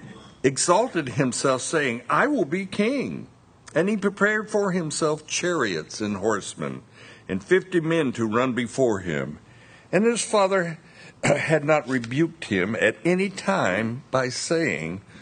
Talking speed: 135 wpm